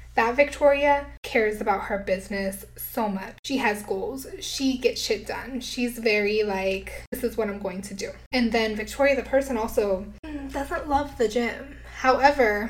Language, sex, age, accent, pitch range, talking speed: English, female, 10-29, American, 210-260 Hz, 170 wpm